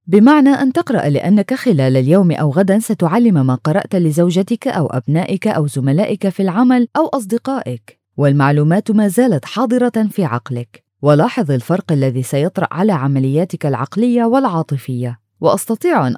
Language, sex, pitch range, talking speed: Arabic, female, 145-225 Hz, 135 wpm